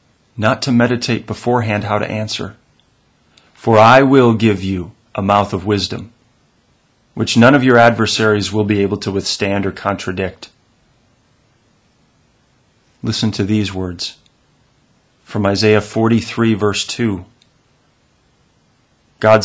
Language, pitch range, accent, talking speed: English, 100-120 Hz, American, 115 wpm